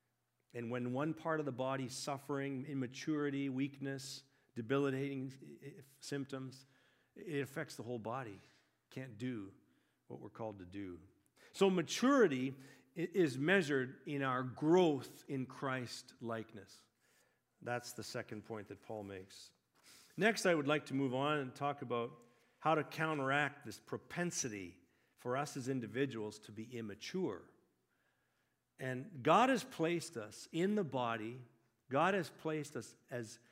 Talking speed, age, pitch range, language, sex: 140 wpm, 50-69, 120-155 Hz, English, male